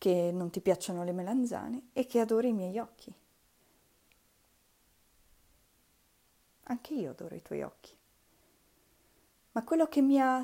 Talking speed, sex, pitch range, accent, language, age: 130 wpm, female, 170-225 Hz, native, Italian, 30-49